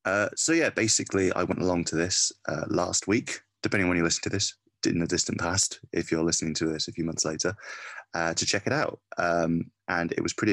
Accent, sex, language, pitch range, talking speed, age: British, male, English, 80-95 Hz, 240 wpm, 30-49